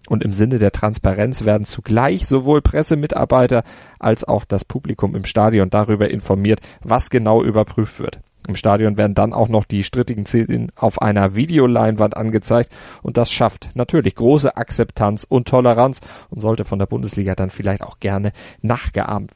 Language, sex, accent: German, male, German